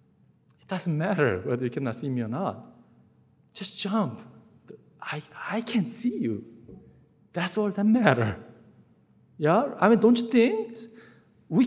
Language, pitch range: English, 115-180 Hz